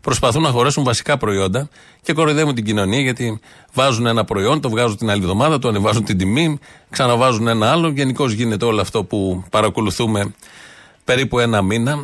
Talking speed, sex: 170 wpm, male